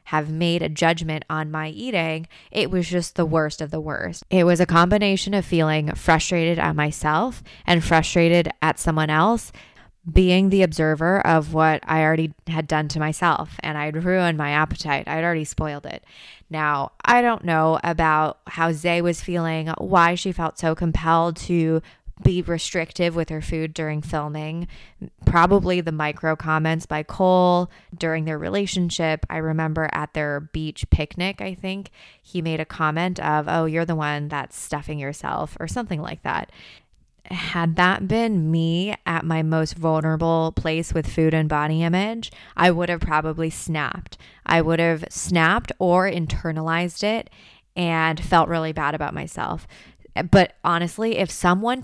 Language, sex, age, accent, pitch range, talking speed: English, female, 20-39, American, 155-180 Hz, 160 wpm